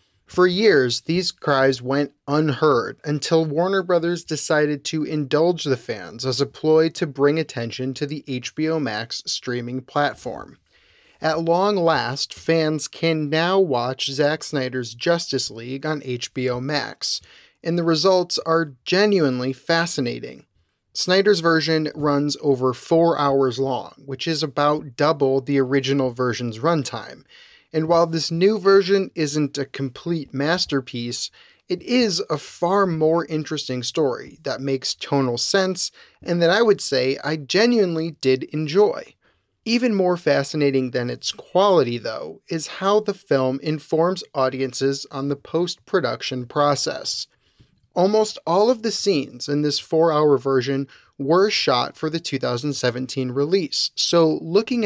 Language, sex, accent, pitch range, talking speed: English, male, American, 135-170 Hz, 135 wpm